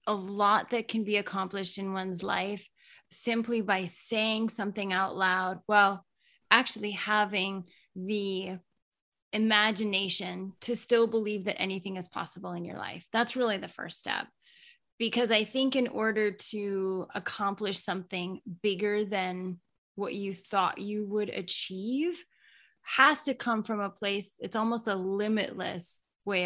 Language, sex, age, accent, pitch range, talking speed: English, female, 20-39, American, 190-220 Hz, 140 wpm